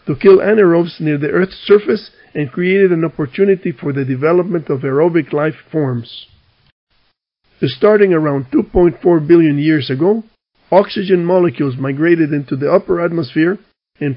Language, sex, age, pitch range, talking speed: English, male, 50-69, 145-185 Hz, 130 wpm